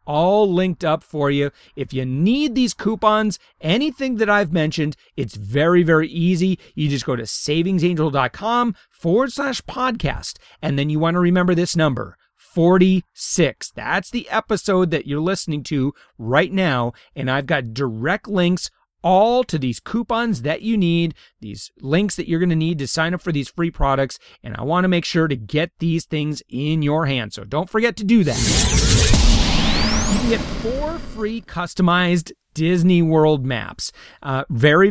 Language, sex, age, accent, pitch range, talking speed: English, male, 30-49, American, 140-195 Hz, 170 wpm